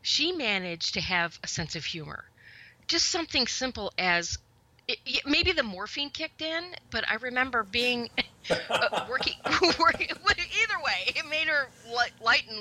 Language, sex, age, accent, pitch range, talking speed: English, female, 40-59, American, 160-265 Hz, 150 wpm